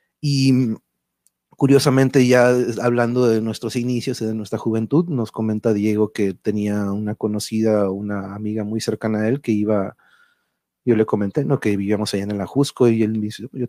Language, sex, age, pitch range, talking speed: Spanish, male, 30-49, 105-125 Hz, 180 wpm